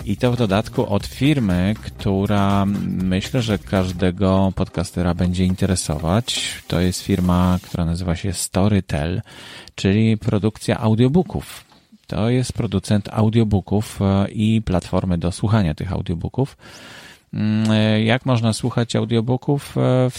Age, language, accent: 30-49, Polish, native